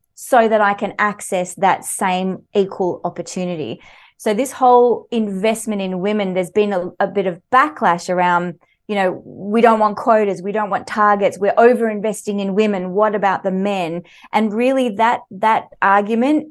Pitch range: 185-240 Hz